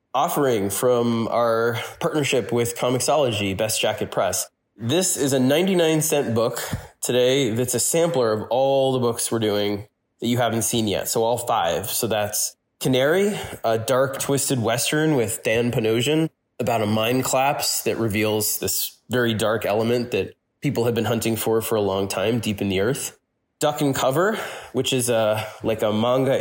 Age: 20-39